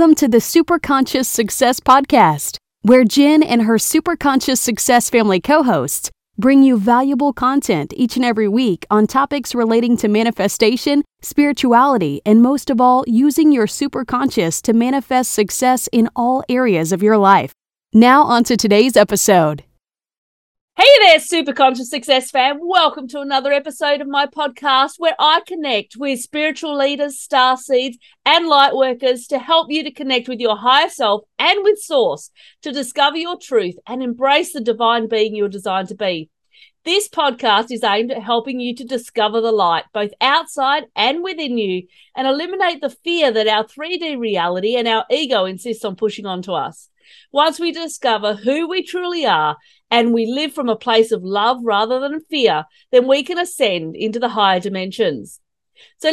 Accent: American